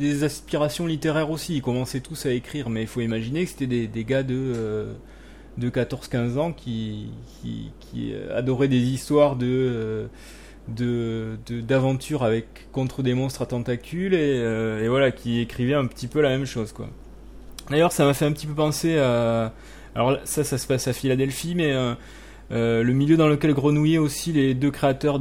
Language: French